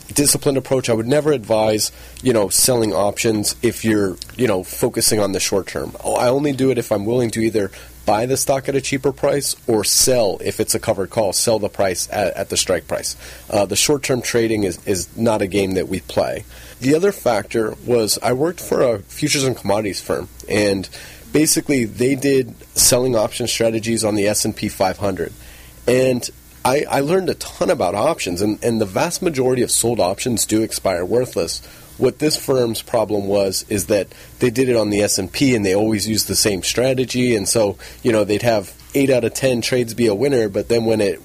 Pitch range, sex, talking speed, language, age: 100-130 Hz, male, 210 wpm, English, 30-49